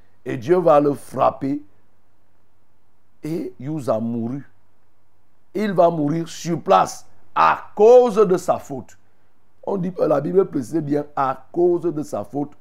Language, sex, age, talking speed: French, male, 60-79, 140 wpm